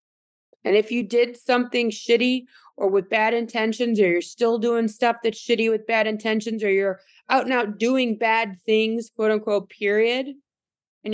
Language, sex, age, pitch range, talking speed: English, female, 20-39, 195-245 Hz, 170 wpm